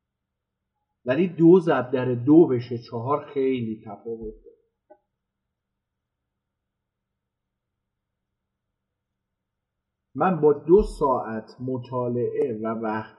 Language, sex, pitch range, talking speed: Persian, male, 115-150 Hz, 75 wpm